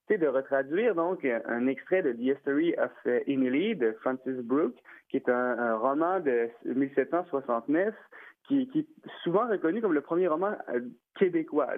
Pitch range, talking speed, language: 120-145 Hz, 160 wpm, French